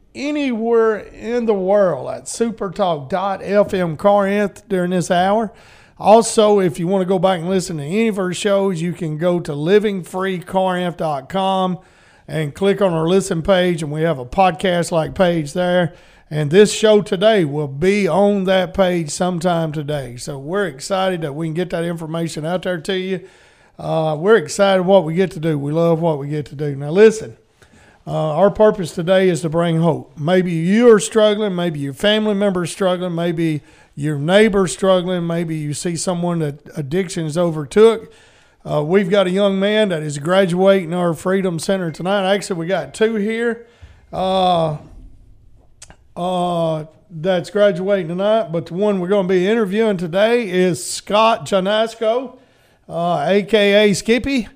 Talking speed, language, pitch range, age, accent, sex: 165 wpm, English, 165-205 Hz, 40-59, American, male